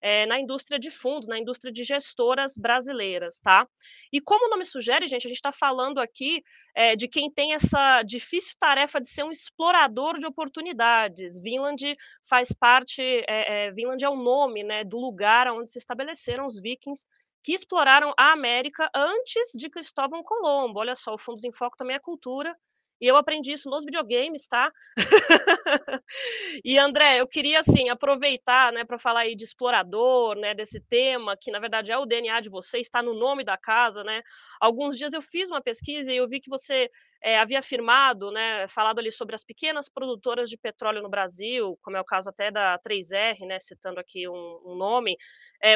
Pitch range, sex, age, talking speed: 230-290 Hz, female, 20-39, 180 wpm